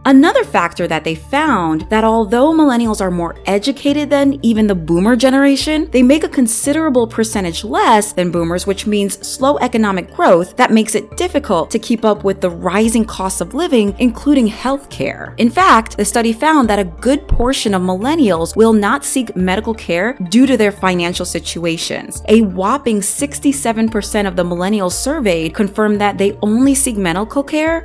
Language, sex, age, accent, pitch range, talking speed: English, female, 30-49, American, 190-260 Hz, 170 wpm